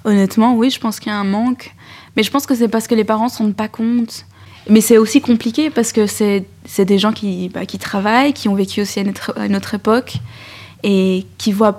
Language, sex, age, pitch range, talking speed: French, female, 20-39, 200-235 Hz, 245 wpm